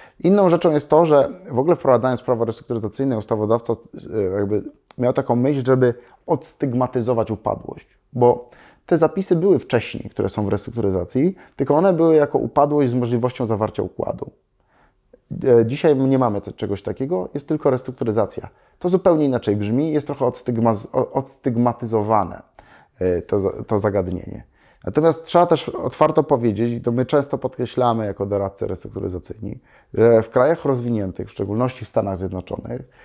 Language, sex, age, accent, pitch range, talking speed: Polish, male, 30-49, native, 115-140 Hz, 140 wpm